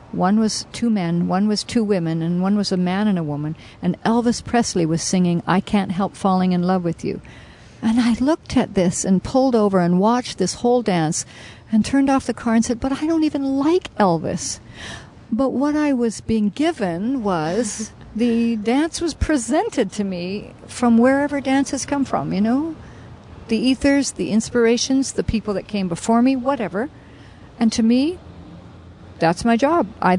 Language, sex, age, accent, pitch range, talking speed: English, female, 50-69, American, 180-240 Hz, 185 wpm